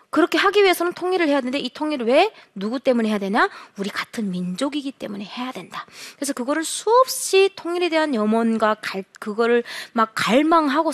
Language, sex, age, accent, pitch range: Korean, female, 20-39, native, 210-325 Hz